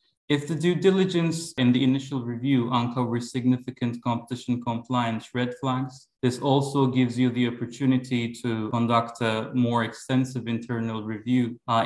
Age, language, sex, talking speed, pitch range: 20-39, English, male, 140 wpm, 115-130 Hz